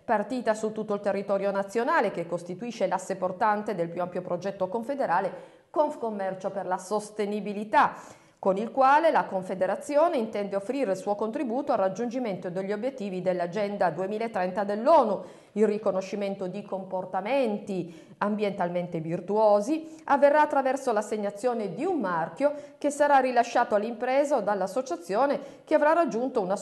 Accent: native